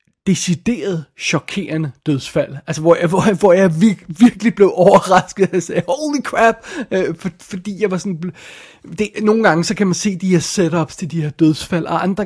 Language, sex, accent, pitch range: Danish, male, native, 150-180 Hz